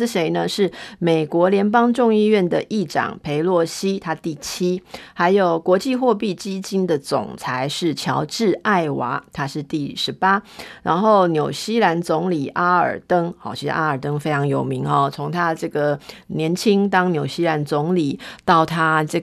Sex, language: female, Chinese